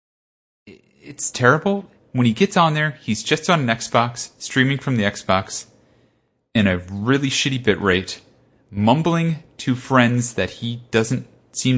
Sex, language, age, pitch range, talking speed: male, English, 30-49, 105-165 Hz, 145 wpm